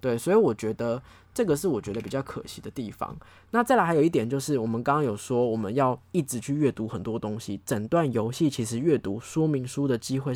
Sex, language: male, Chinese